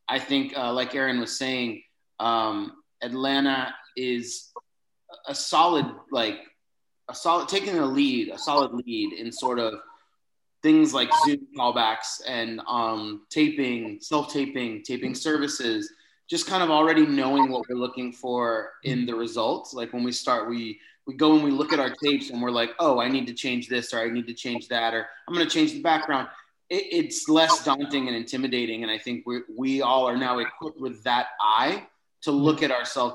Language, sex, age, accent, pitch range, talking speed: English, male, 20-39, American, 120-160 Hz, 190 wpm